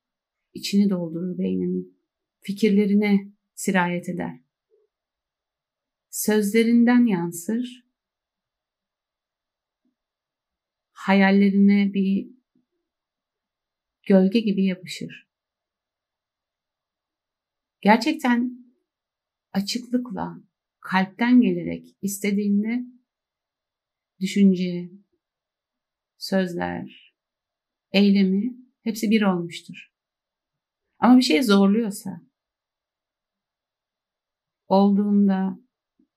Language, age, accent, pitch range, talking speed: Turkish, 60-79, native, 195-245 Hz, 50 wpm